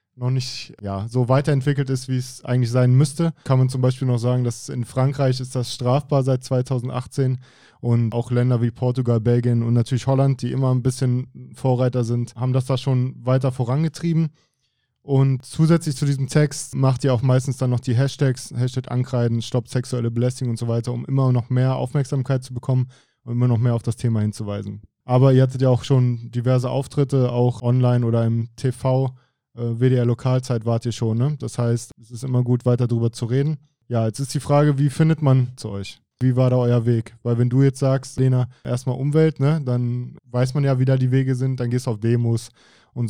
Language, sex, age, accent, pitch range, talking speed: German, male, 20-39, German, 120-135 Hz, 205 wpm